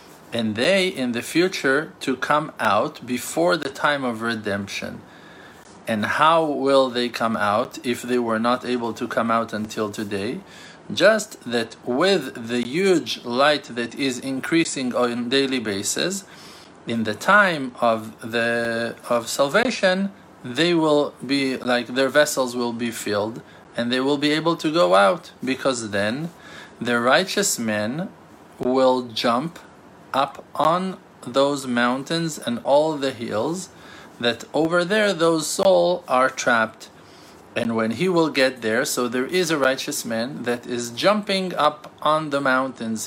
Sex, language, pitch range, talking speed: male, English, 120-160 Hz, 150 wpm